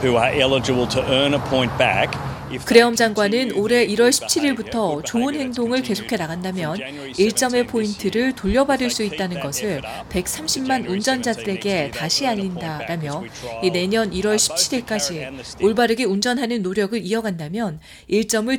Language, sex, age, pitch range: Korean, female, 40-59, 180-250 Hz